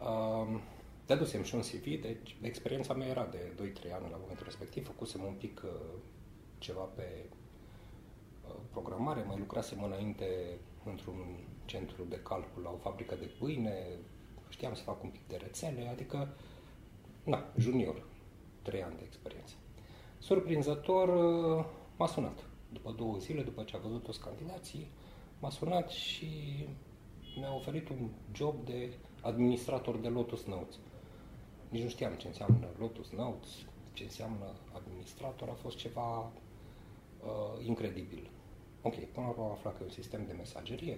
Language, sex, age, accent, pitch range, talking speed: English, male, 30-49, Romanian, 100-125 Hz, 140 wpm